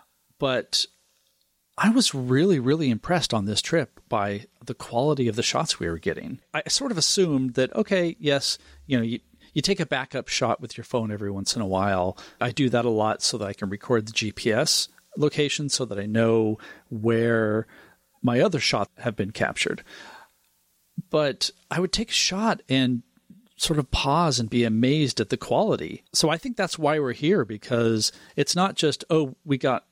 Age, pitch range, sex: 40-59, 110-150 Hz, male